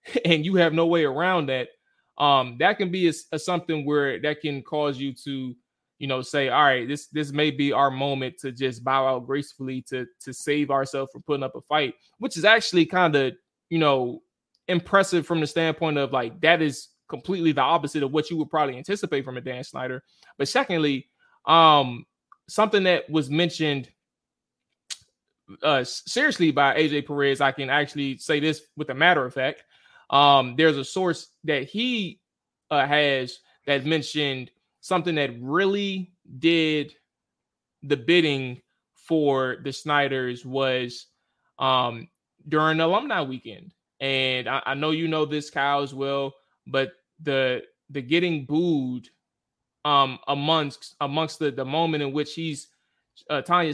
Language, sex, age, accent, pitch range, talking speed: English, male, 20-39, American, 135-165 Hz, 160 wpm